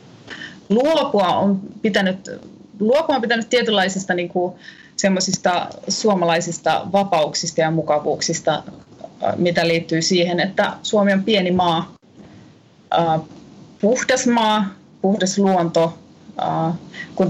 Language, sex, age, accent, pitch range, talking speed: Finnish, female, 30-49, native, 165-210 Hz, 90 wpm